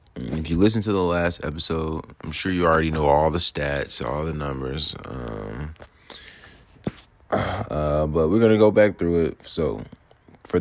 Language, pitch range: English, 75-90 Hz